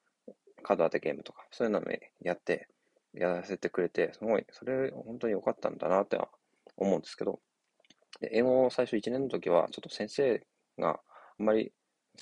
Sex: male